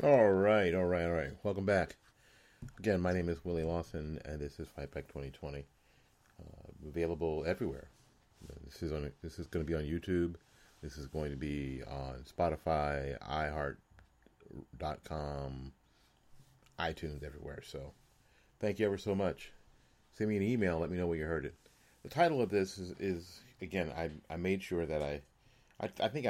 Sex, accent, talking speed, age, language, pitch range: male, American, 175 wpm, 40-59, English, 75-95 Hz